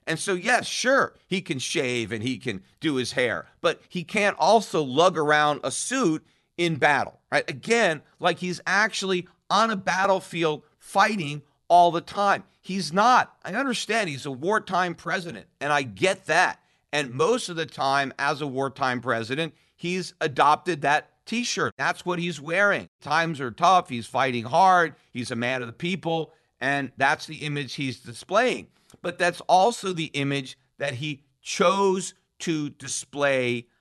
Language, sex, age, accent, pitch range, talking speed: English, male, 50-69, American, 135-185 Hz, 165 wpm